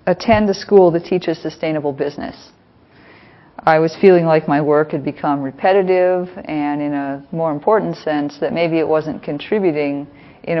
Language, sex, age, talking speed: English, female, 30-49, 160 wpm